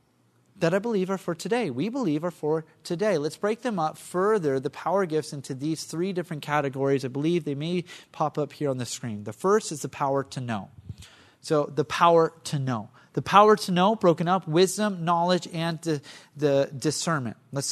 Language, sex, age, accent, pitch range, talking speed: English, male, 30-49, American, 140-190 Hz, 200 wpm